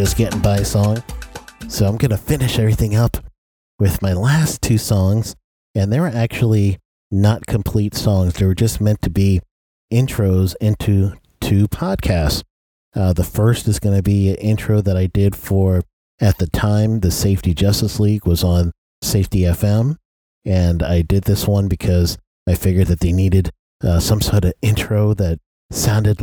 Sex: male